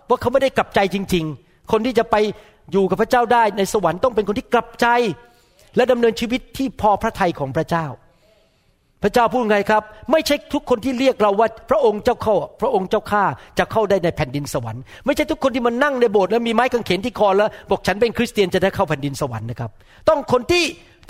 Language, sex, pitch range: Thai, male, 160-240 Hz